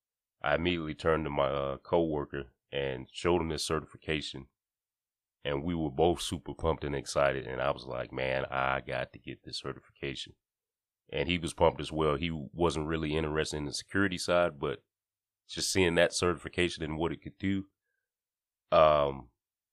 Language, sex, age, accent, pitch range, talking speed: English, male, 30-49, American, 70-85 Hz, 170 wpm